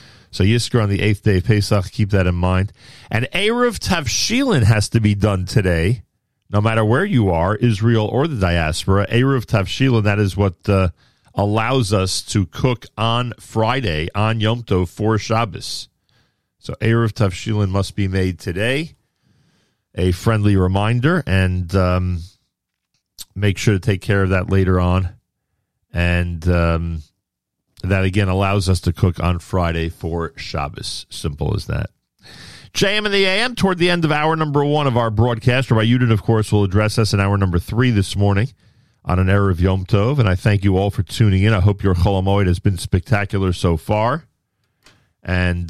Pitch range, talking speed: 95-115 Hz, 175 wpm